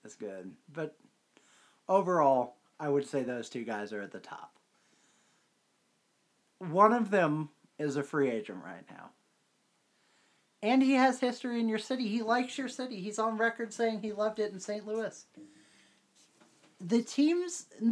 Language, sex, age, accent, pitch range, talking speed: English, male, 40-59, American, 170-230 Hz, 155 wpm